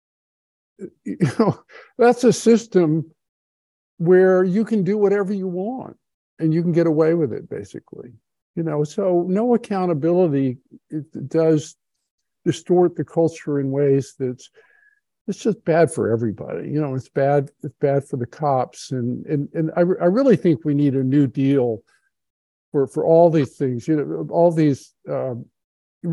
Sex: male